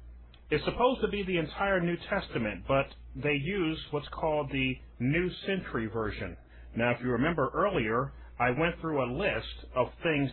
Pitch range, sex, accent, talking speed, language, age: 105-145 Hz, male, American, 170 wpm, English, 30-49